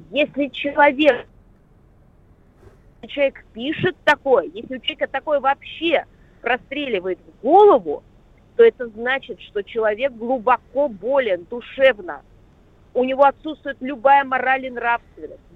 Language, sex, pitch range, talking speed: Russian, female, 215-275 Hz, 110 wpm